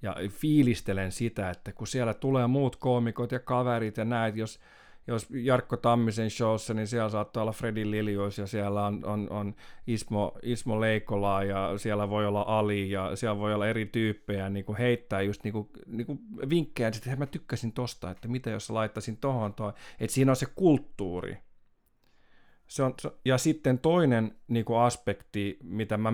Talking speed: 170 wpm